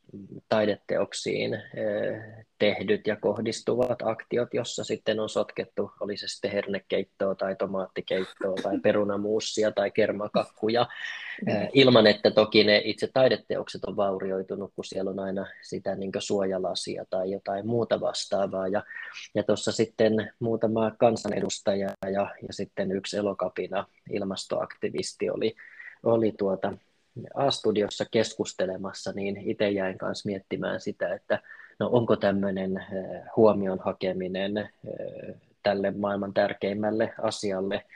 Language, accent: Finnish, native